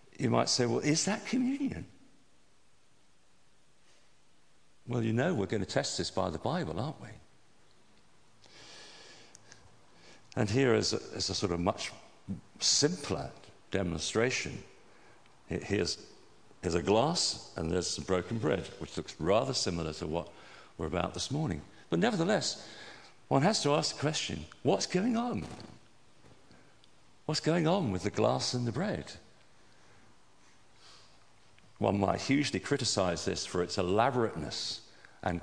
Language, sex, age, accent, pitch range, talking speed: English, male, 50-69, British, 90-135 Hz, 135 wpm